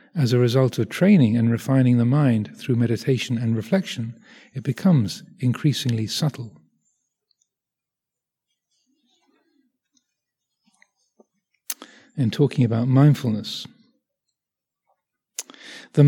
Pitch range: 120-175 Hz